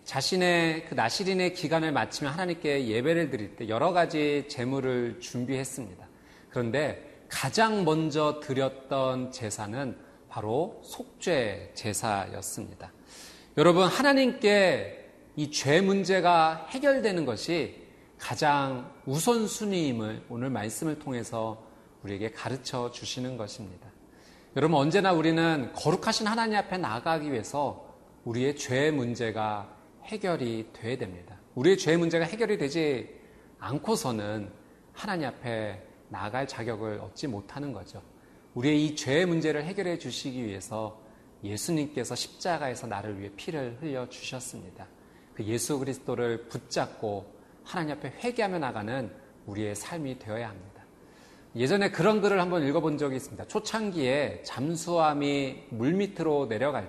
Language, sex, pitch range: Korean, male, 110-165 Hz